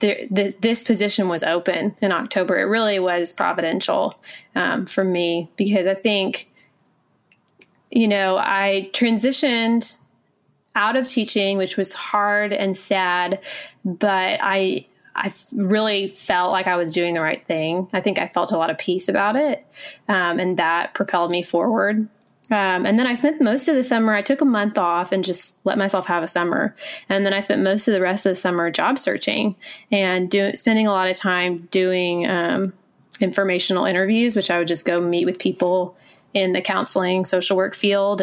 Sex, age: female, 20-39